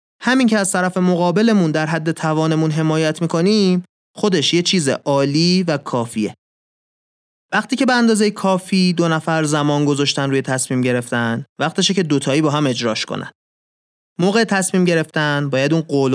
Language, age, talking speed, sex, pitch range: Persian, 30-49, 150 wpm, male, 130-175 Hz